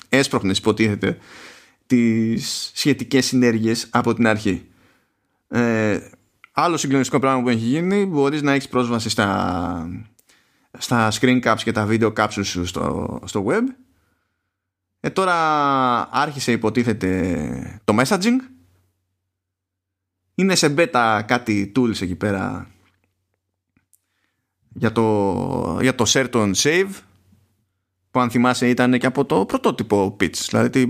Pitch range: 95-130 Hz